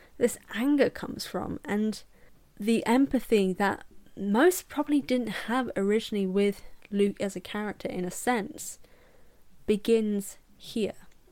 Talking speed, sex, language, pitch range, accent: 120 wpm, female, English, 195-250 Hz, British